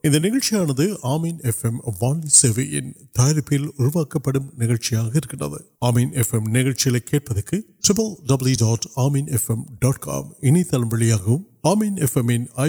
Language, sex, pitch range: Urdu, male, 120-160 Hz